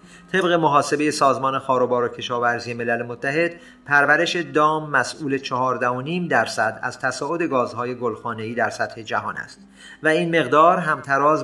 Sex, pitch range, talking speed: male, 115-150 Hz, 135 wpm